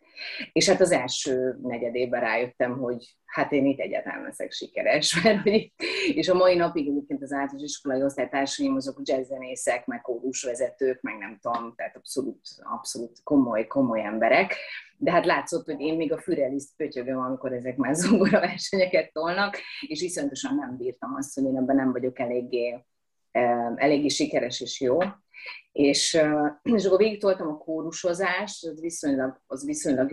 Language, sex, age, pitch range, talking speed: Hungarian, female, 30-49, 130-200 Hz, 150 wpm